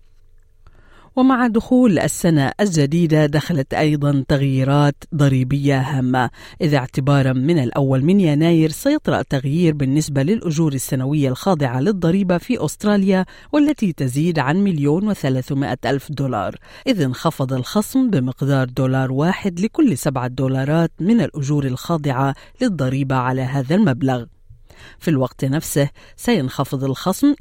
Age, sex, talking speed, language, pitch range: 50-69, female, 115 wpm, Arabic, 135-180 Hz